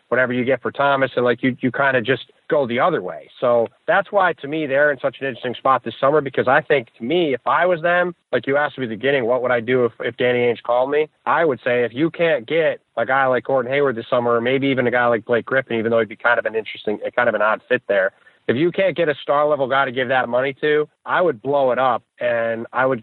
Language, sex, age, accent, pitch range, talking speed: English, male, 30-49, American, 120-145 Hz, 295 wpm